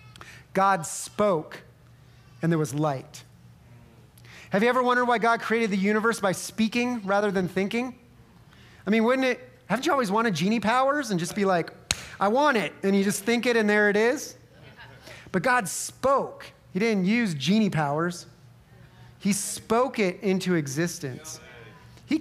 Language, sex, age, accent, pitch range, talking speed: English, male, 30-49, American, 155-215 Hz, 160 wpm